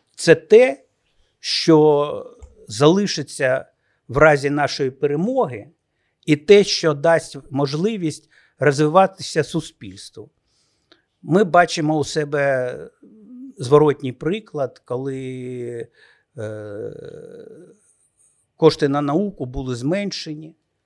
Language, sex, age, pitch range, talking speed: Ukrainian, male, 50-69, 140-180 Hz, 80 wpm